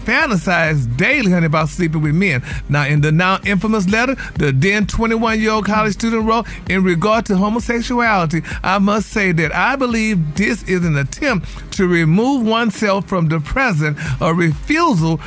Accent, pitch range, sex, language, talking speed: American, 165-215 Hz, male, English, 160 wpm